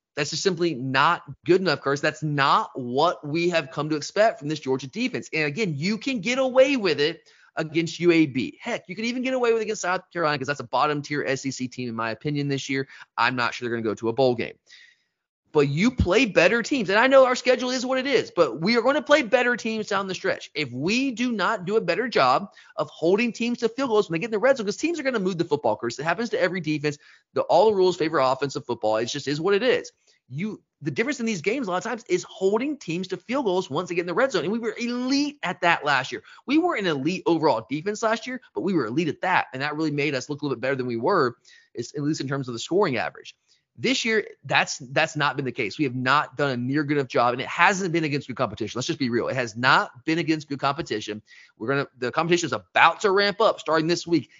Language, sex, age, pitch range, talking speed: English, male, 30-49, 145-225 Hz, 270 wpm